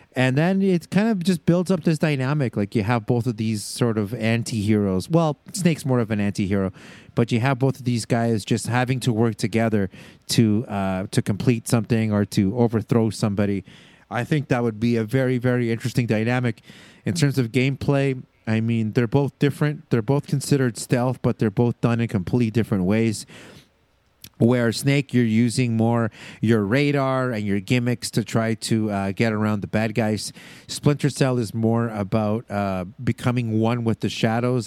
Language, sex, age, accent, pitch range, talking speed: English, male, 30-49, American, 110-135 Hz, 185 wpm